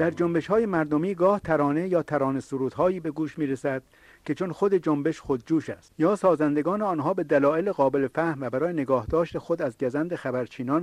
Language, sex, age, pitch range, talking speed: English, male, 50-69, 135-170 Hz, 195 wpm